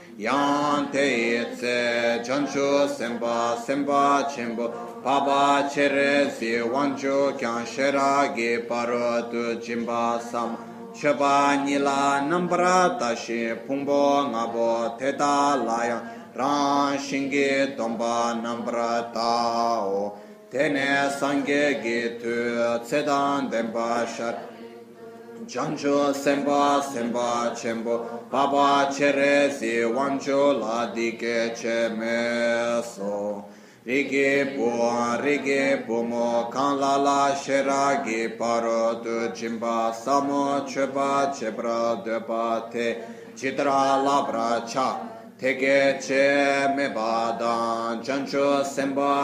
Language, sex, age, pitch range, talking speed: Italian, male, 30-49, 115-140 Hz, 80 wpm